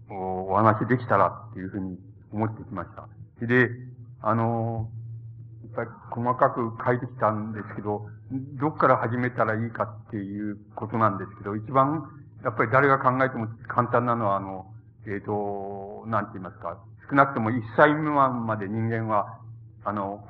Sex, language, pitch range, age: male, Japanese, 105-125 Hz, 60-79